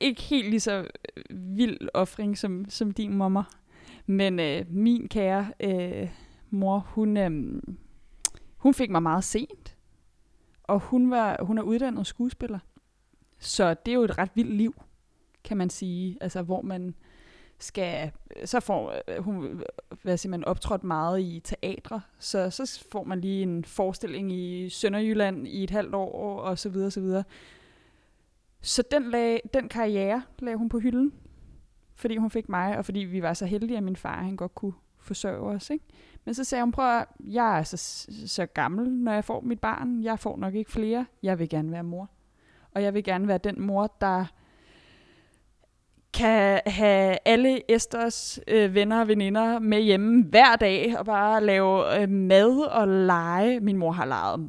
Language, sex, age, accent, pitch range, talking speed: Danish, female, 20-39, native, 190-230 Hz, 170 wpm